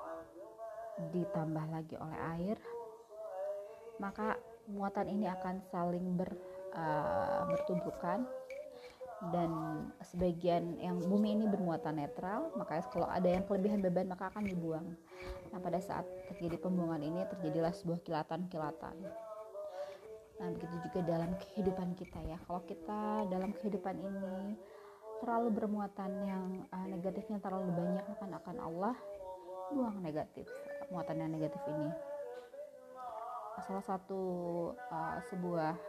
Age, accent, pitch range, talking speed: 20-39, native, 175-205 Hz, 115 wpm